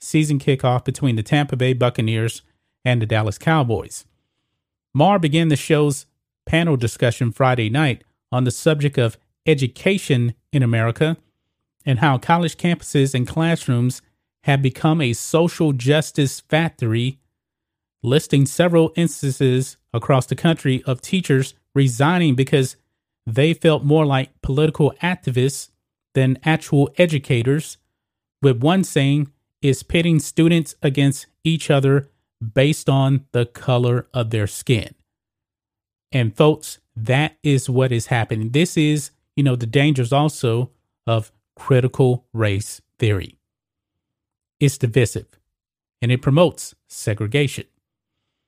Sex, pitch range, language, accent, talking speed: male, 115-150 Hz, English, American, 120 wpm